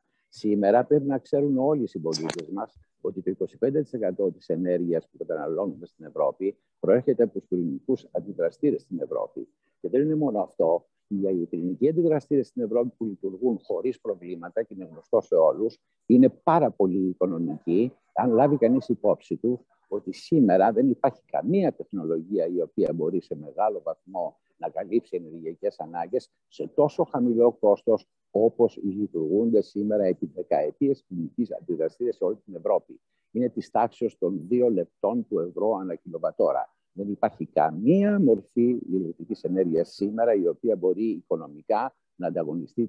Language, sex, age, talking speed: Greek, male, 60-79, 150 wpm